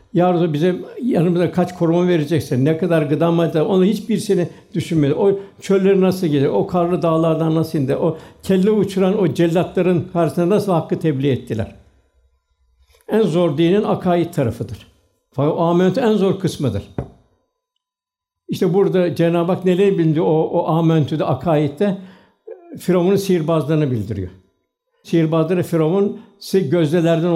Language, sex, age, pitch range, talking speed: Turkish, male, 60-79, 150-190 Hz, 125 wpm